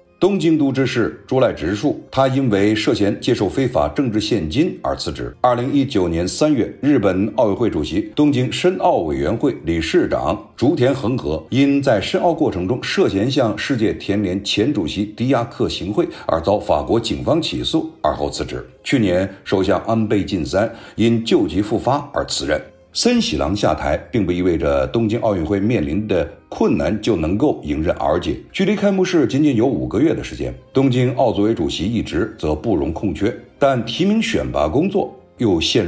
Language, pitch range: Chinese, 100-155 Hz